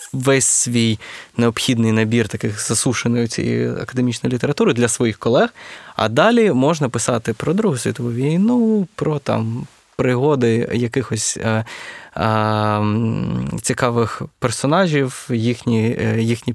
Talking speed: 110 wpm